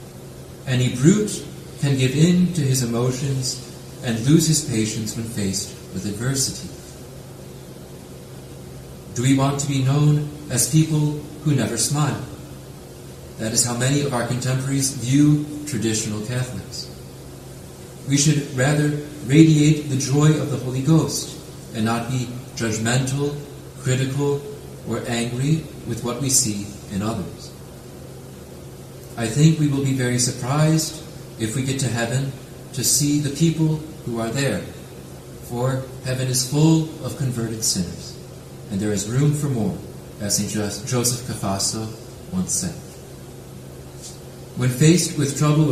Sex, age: male, 30-49